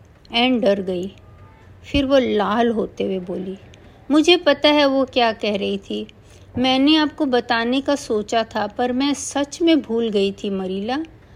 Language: Hindi